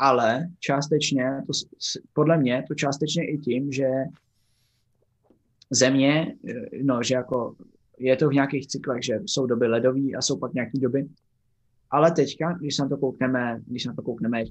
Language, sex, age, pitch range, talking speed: Czech, male, 20-39, 120-145 Hz, 160 wpm